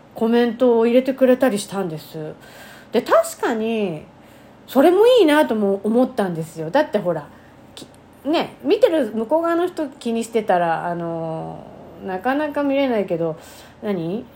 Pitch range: 185-255 Hz